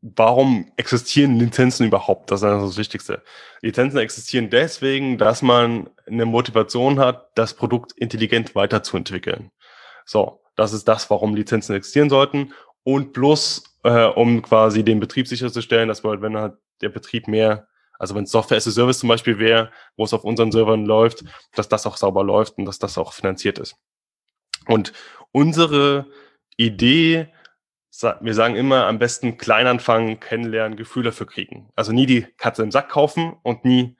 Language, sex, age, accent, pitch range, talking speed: German, male, 10-29, German, 115-135 Hz, 165 wpm